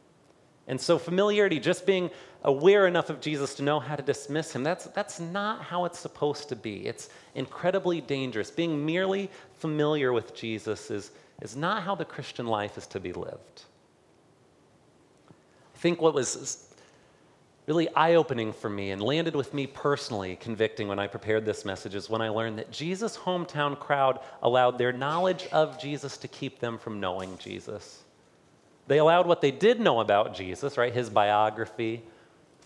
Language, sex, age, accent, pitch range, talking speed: English, male, 40-59, American, 115-160 Hz, 170 wpm